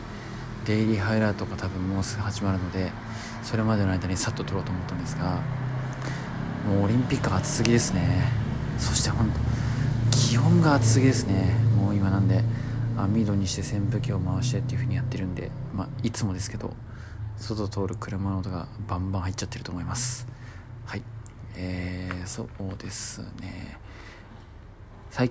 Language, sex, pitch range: Japanese, male, 95-115 Hz